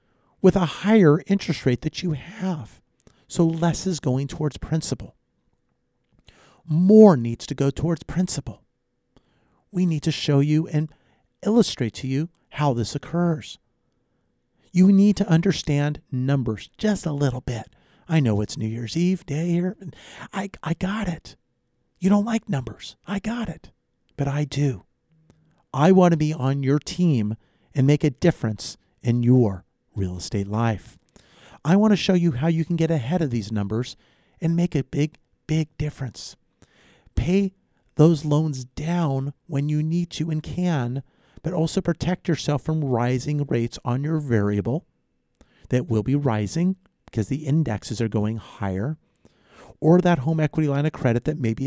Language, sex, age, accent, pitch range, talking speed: English, male, 40-59, American, 120-170 Hz, 160 wpm